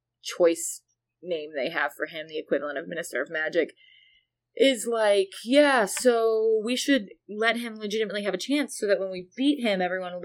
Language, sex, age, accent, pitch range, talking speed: English, female, 20-39, American, 175-220 Hz, 185 wpm